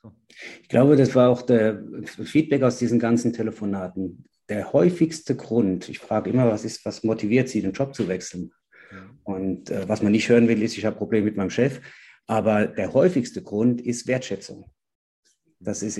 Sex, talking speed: male, 180 wpm